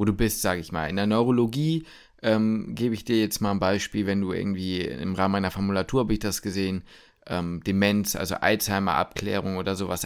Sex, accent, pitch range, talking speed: male, German, 95-115 Hz, 205 wpm